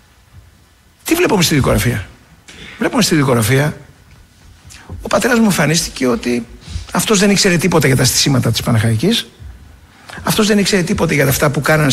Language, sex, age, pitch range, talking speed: Greek, male, 60-79, 110-170 Hz, 145 wpm